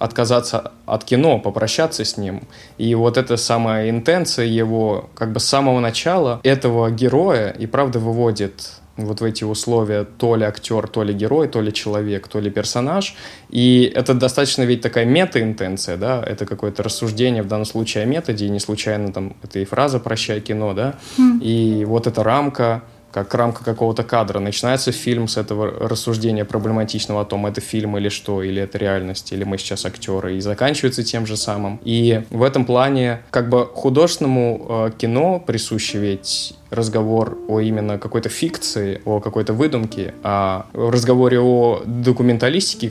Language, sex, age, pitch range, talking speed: Russian, male, 20-39, 105-125 Hz, 165 wpm